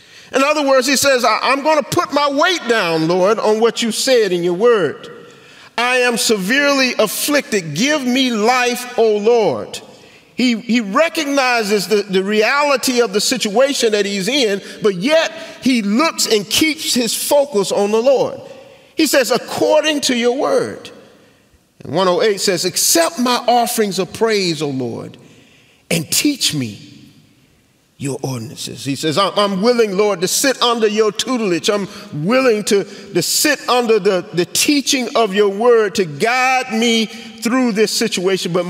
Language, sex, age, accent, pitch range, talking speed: English, male, 40-59, American, 185-255 Hz, 160 wpm